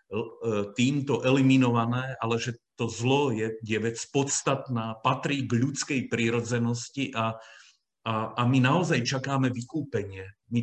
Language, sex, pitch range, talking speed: Slovak, male, 120-165 Hz, 120 wpm